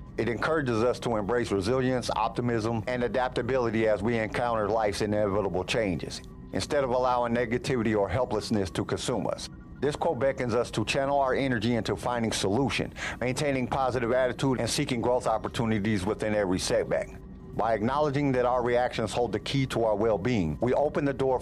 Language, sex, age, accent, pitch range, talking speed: English, male, 50-69, American, 110-130 Hz, 170 wpm